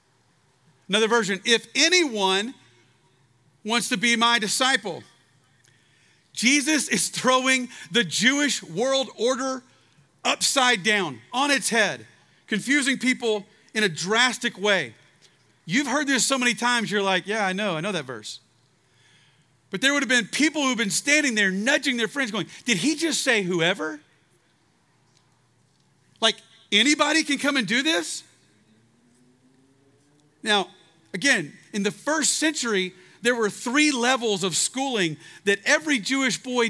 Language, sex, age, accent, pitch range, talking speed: English, male, 40-59, American, 165-255 Hz, 135 wpm